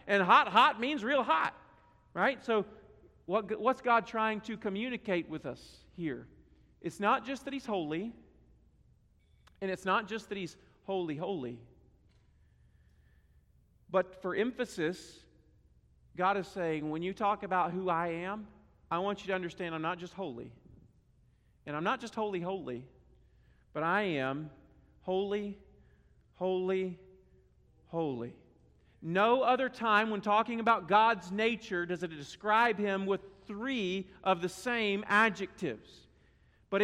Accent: American